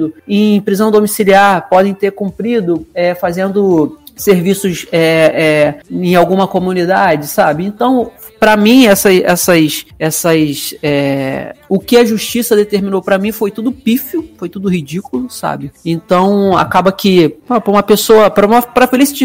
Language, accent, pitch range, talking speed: Portuguese, Brazilian, 170-225 Hz, 130 wpm